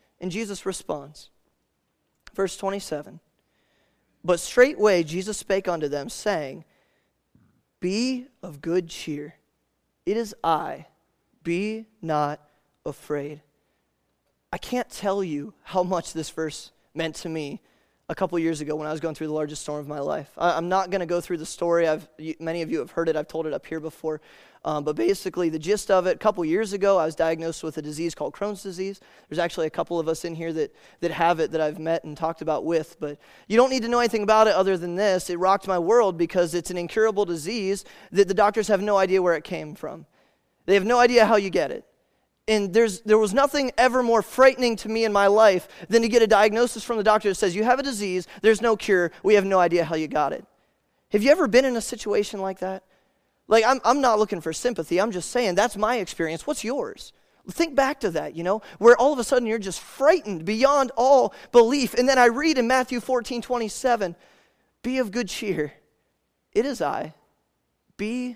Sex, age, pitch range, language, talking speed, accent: male, 20-39, 165-225 Hz, English, 210 wpm, American